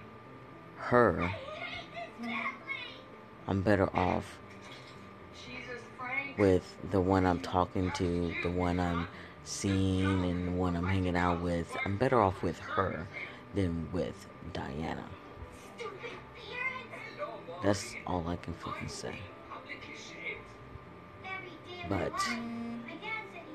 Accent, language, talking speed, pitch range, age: American, English, 90 wpm, 85-100 Hz, 40-59